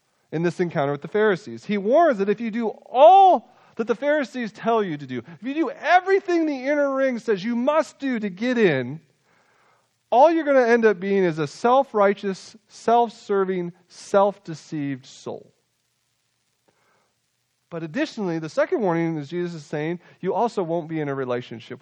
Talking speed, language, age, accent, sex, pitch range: 175 wpm, English, 40-59, American, male, 140-215 Hz